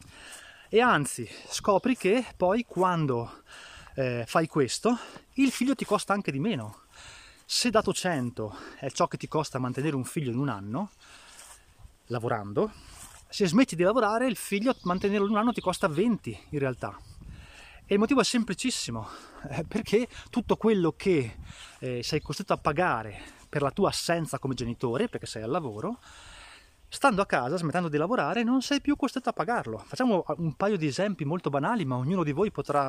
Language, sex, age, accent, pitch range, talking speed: Italian, male, 20-39, native, 130-195 Hz, 175 wpm